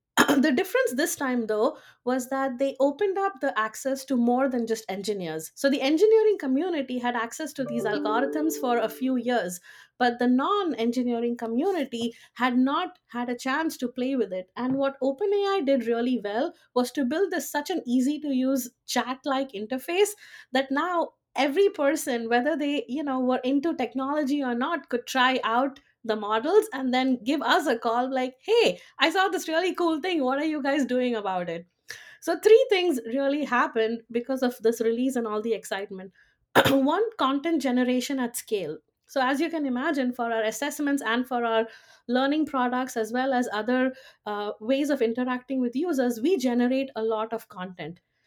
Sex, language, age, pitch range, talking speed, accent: female, English, 20-39, 235-295 Hz, 180 wpm, Indian